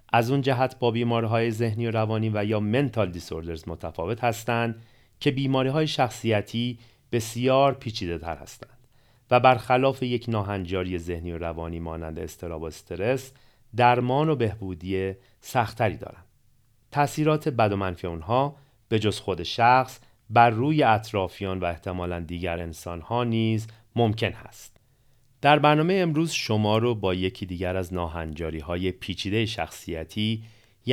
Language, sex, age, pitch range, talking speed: Persian, male, 30-49, 90-120 Hz, 130 wpm